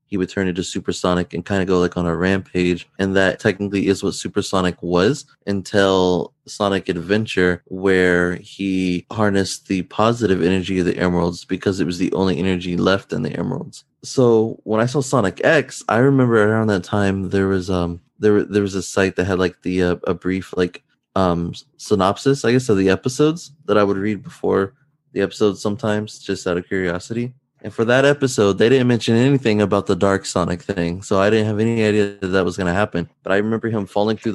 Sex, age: male, 20-39